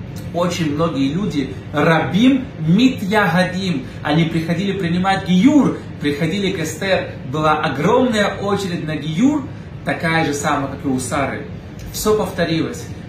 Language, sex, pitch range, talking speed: Russian, male, 155-210 Hz, 125 wpm